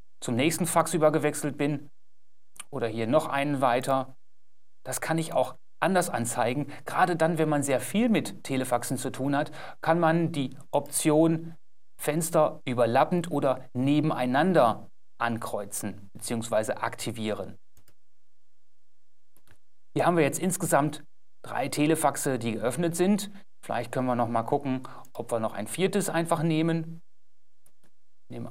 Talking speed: 130 wpm